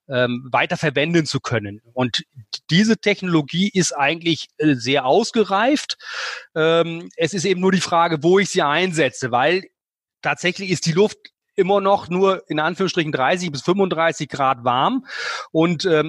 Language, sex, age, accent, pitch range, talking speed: German, male, 30-49, German, 145-185 Hz, 135 wpm